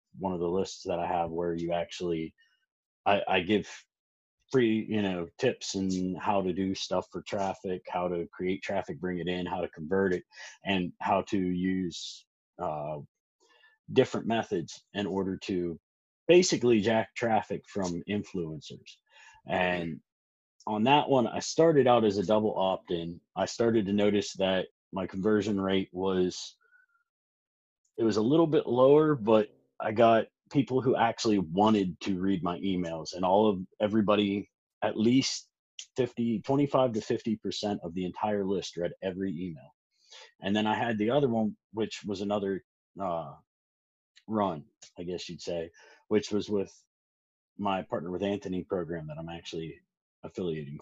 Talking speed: 155 wpm